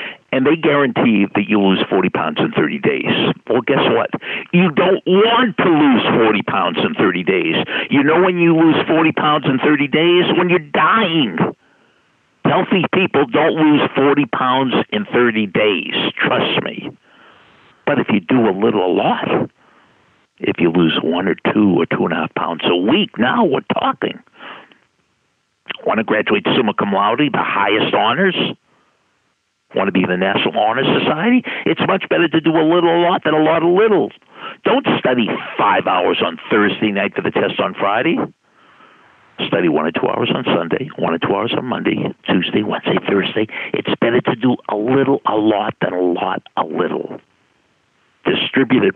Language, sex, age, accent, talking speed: English, male, 60-79, American, 180 wpm